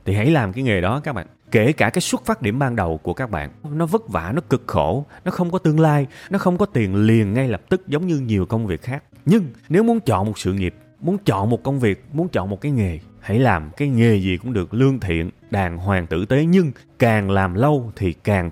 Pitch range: 100-160 Hz